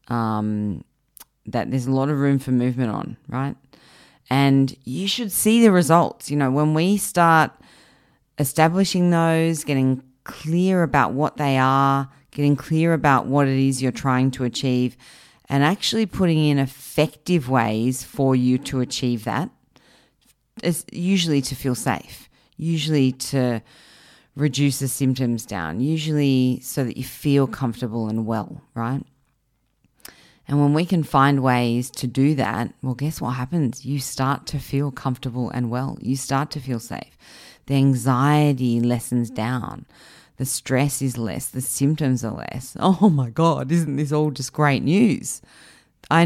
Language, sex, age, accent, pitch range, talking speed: English, female, 30-49, Australian, 130-160 Hz, 150 wpm